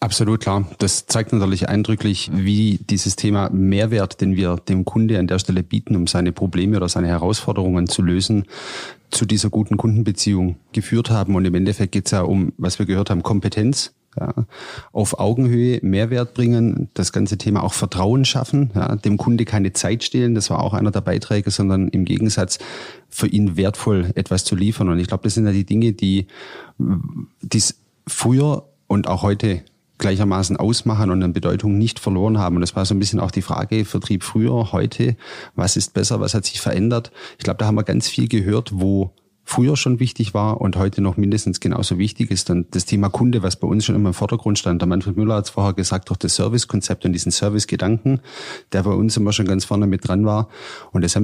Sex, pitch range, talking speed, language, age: male, 95-110 Hz, 205 wpm, German, 30-49